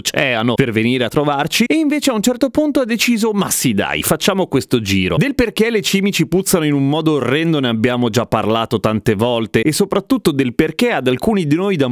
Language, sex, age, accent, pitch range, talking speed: Italian, male, 30-49, native, 120-185 Hz, 210 wpm